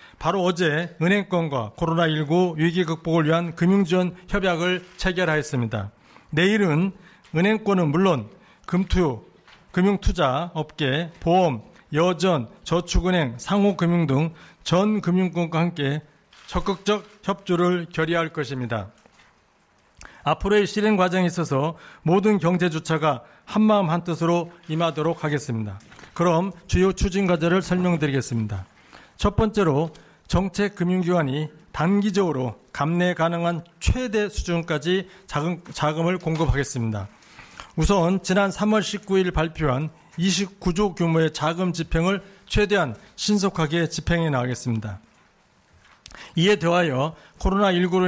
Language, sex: Korean, male